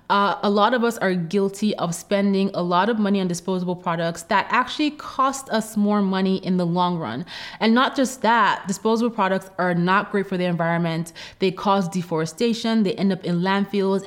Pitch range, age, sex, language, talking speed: 175-205 Hz, 20-39, female, English, 195 wpm